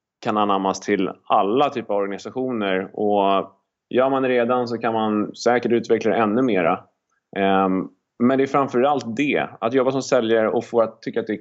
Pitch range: 110-125 Hz